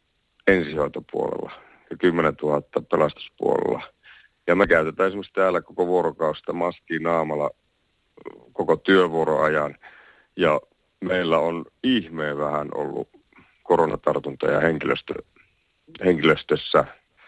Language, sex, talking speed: Finnish, male, 85 wpm